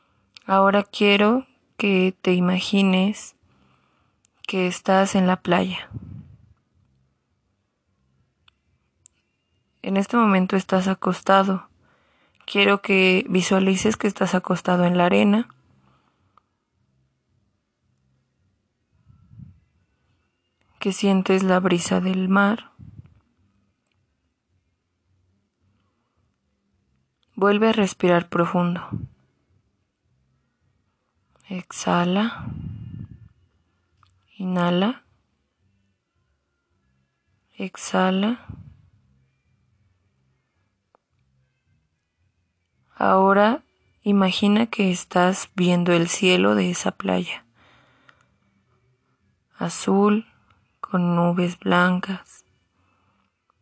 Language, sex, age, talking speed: Spanish, female, 20-39, 55 wpm